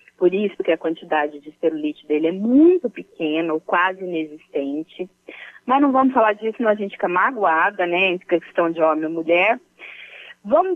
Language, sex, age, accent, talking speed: Portuguese, female, 30-49, Brazilian, 180 wpm